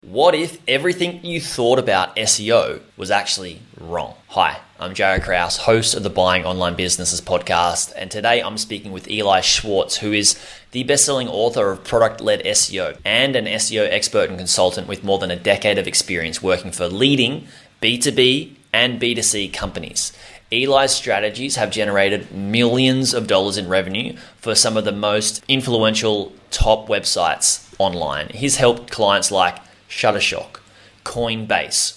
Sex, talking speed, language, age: male, 150 wpm, English, 20-39